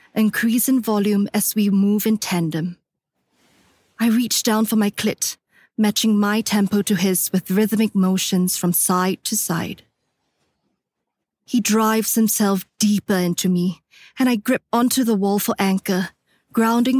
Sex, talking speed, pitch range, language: female, 145 wpm, 190-225 Hz, English